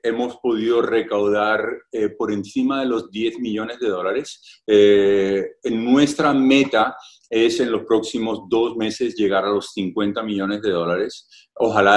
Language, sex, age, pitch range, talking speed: Spanish, male, 40-59, 105-130 Hz, 145 wpm